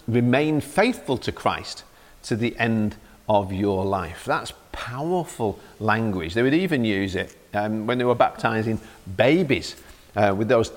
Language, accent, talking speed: English, British, 150 wpm